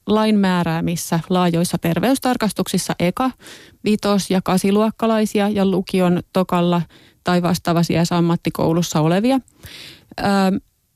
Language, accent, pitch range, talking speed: Finnish, native, 170-205 Hz, 90 wpm